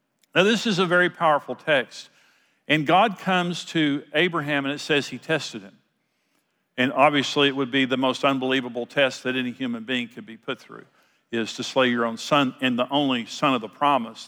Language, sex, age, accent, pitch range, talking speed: English, male, 50-69, American, 130-170 Hz, 200 wpm